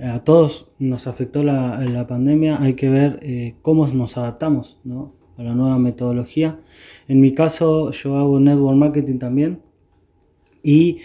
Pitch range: 130-155 Hz